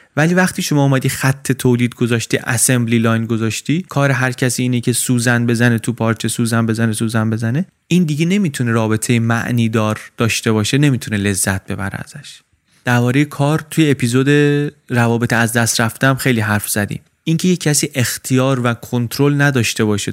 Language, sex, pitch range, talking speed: Persian, male, 115-145 Hz, 160 wpm